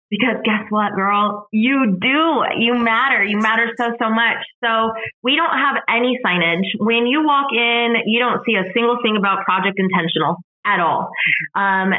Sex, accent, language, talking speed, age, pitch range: female, American, English, 175 wpm, 20-39, 195-230 Hz